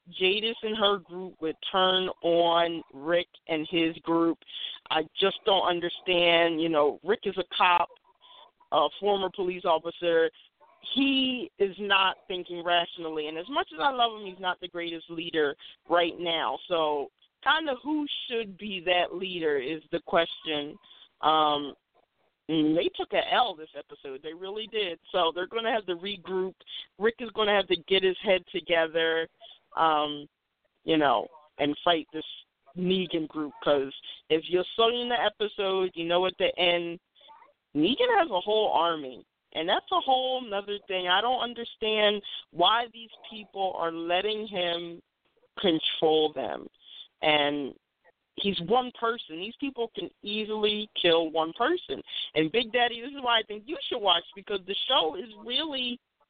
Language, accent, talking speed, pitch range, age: English, American, 160 wpm, 165-225 Hz, 40-59